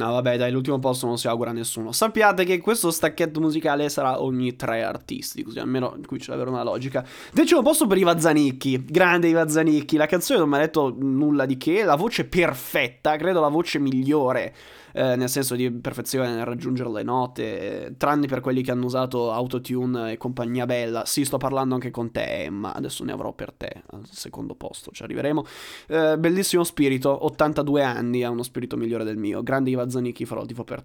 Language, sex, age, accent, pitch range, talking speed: Italian, male, 20-39, native, 130-185 Hz, 200 wpm